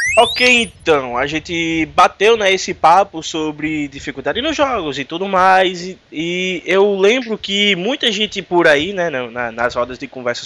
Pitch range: 145-195 Hz